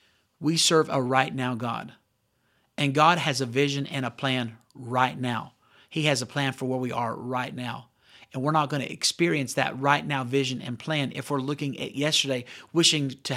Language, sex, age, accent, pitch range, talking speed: English, male, 40-59, American, 130-160 Hz, 200 wpm